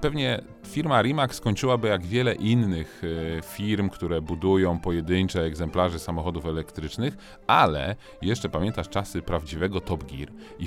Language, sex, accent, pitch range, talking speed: Polish, male, native, 85-105 Hz, 125 wpm